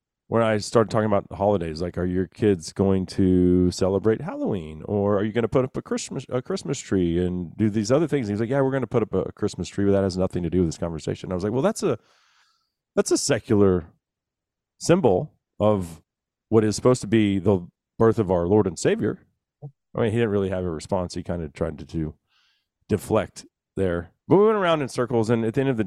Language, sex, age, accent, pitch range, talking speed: English, male, 40-59, American, 95-130 Hz, 235 wpm